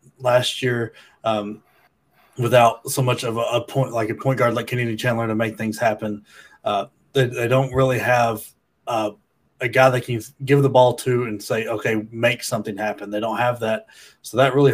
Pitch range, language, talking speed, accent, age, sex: 110-125 Hz, English, 200 wpm, American, 20-39, male